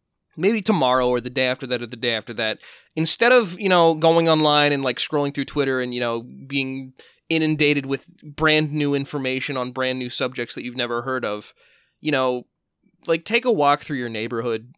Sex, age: male, 20-39